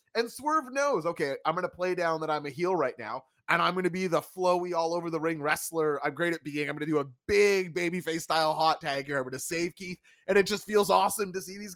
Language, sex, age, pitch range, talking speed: English, male, 30-49, 115-175 Hz, 265 wpm